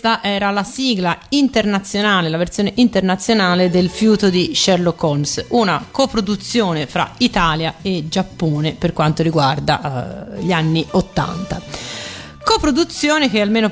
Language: Italian